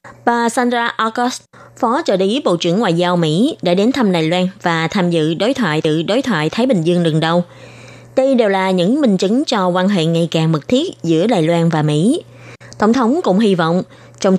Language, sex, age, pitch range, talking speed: Vietnamese, female, 20-39, 165-230 Hz, 220 wpm